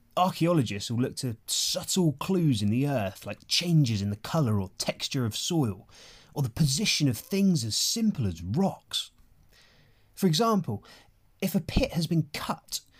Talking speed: 160 wpm